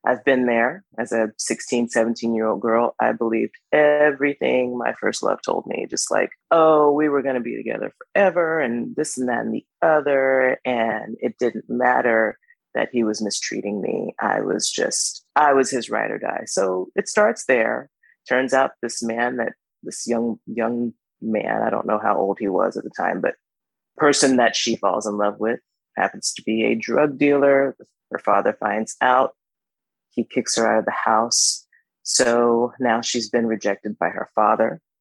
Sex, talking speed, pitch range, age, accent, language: female, 185 wpm, 115-130 Hz, 30-49, American, English